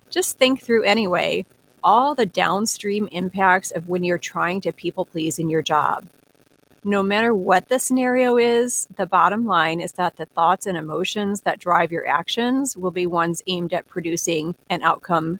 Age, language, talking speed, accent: 40-59, English, 170 wpm, American